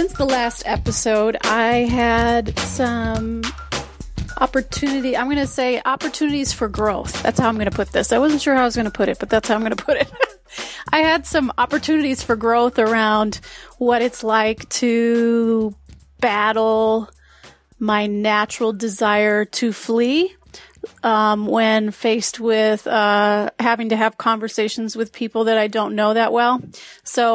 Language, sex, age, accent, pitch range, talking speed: English, female, 30-49, American, 215-255 Hz, 165 wpm